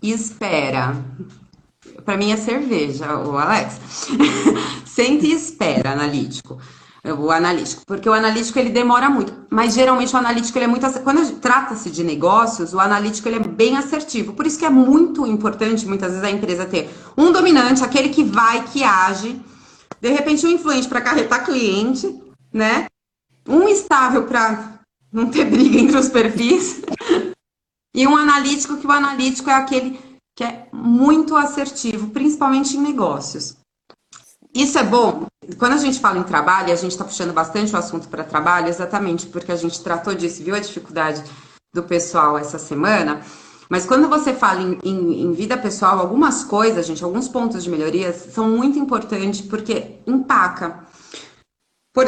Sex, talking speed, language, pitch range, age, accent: female, 165 wpm, Portuguese, 185-275 Hz, 30-49, Brazilian